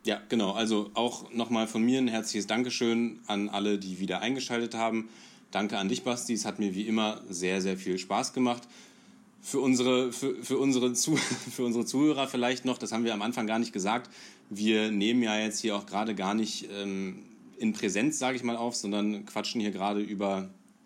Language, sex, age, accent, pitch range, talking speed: German, male, 30-49, German, 100-115 Hz, 185 wpm